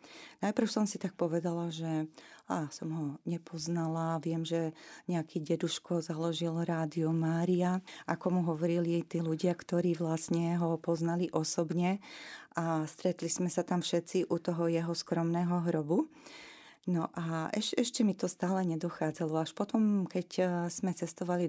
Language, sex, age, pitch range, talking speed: Slovak, female, 30-49, 170-185 Hz, 145 wpm